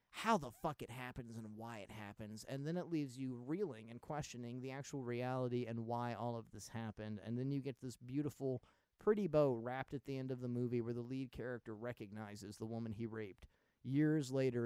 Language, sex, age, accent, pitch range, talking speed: English, male, 30-49, American, 115-140 Hz, 215 wpm